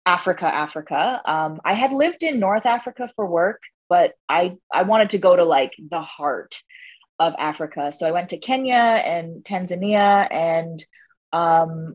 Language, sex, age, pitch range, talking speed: English, female, 20-39, 165-255 Hz, 160 wpm